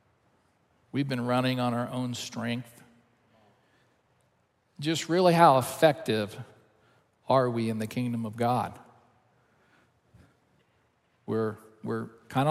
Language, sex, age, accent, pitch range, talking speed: English, male, 50-69, American, 125-160 Hz, 100 wpm